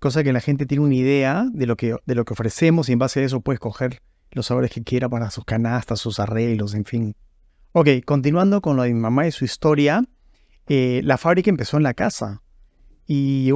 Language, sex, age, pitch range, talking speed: English, male, 30-49, 120-140 Hz, 225 wpm